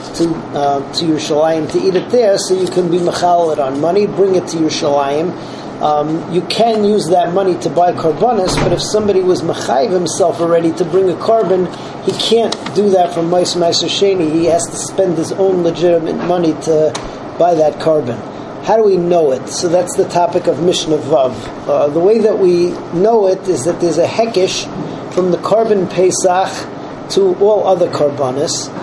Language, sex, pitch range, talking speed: English, male, 155-190 Hz, 195 wpm